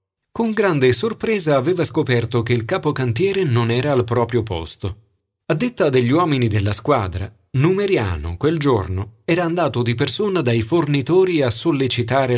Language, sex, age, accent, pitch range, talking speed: Italian, male, 40-59, native, 105-150 Hz, 145 wpm